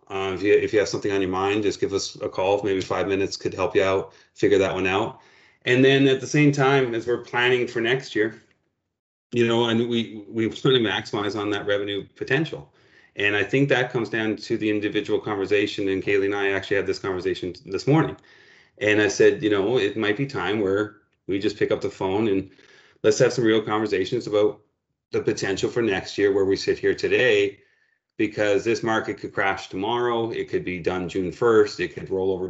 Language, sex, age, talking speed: English, male, 30-49, 220 wpm